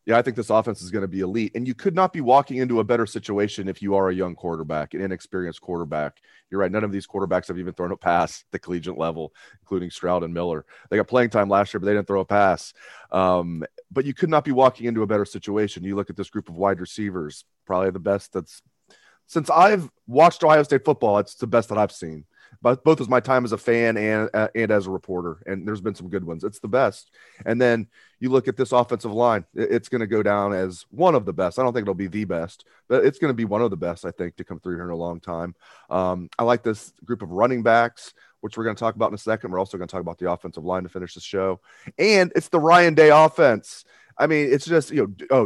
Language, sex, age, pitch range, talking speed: English, male, 30-49, 95-120 Hz, 270 wpm